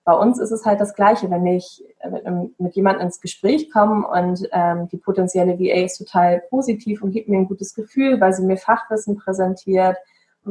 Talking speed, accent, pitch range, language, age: 205 wpm, German, 180-220 Hz, German, 20-39